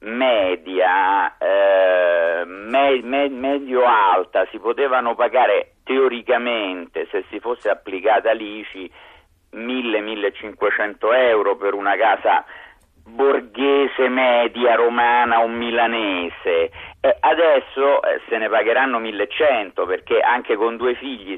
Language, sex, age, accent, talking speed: Italian, male, 50-69, native, 100 wpm